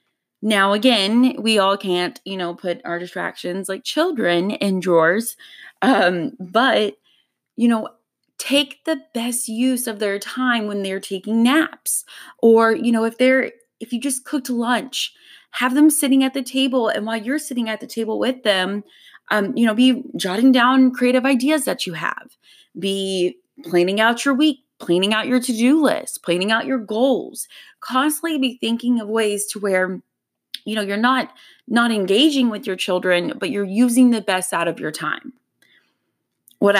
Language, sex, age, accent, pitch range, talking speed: English, female, 20-39, American, 185-255 Hz, 170 wpm